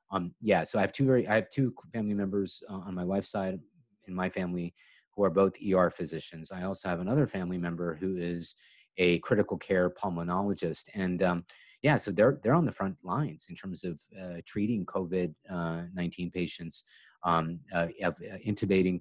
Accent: American